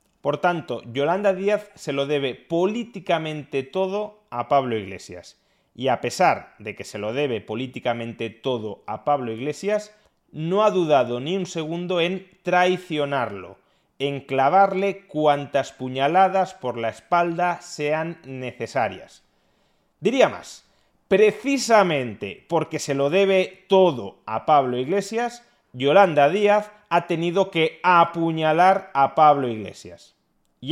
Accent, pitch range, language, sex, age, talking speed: Spanish, 135-195 Hz, Spanish, male, 30-49, 125 wpm